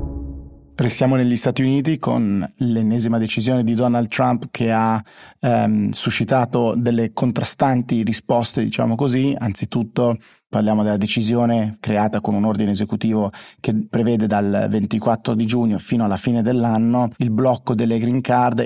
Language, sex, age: Italian, male, 30-49